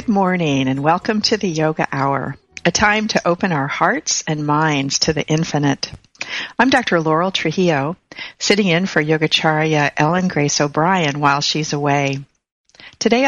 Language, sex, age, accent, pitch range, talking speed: English, female, 50-69, American, 145-185 Hz, 155 wpm